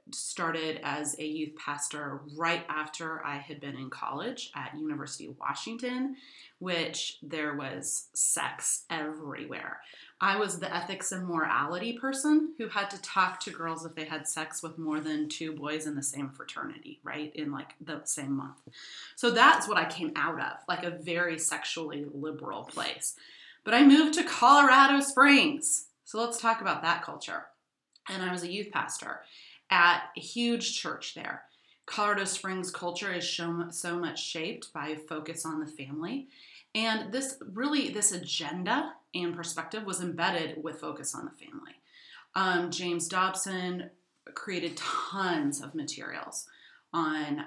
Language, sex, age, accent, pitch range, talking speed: English, female, 30-49, American, 155-215 Hz, 155 wpm